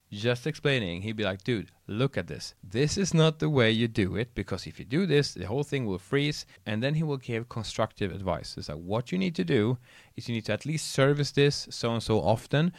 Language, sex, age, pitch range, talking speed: English, male, 30-49, 100-135 Hz, 250 wpm